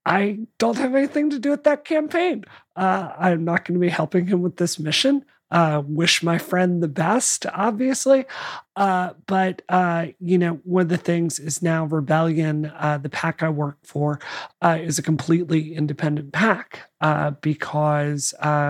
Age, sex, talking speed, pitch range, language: 30-49, male, 170 wpm, 150-180 Hz, English